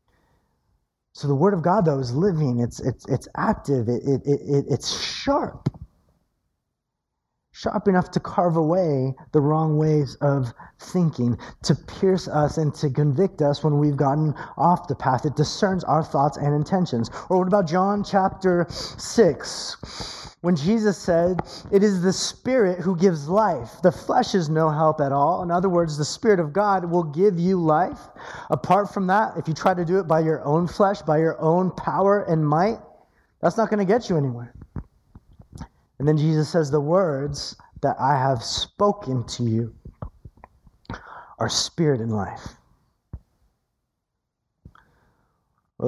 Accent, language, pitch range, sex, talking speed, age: American, English, 130-175 Hz, male, 160 wpm, 20-39